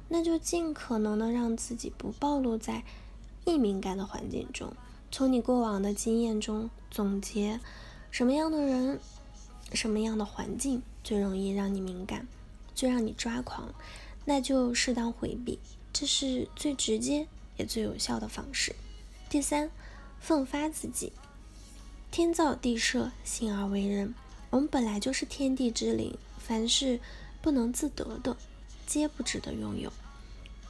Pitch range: 215-285 Hz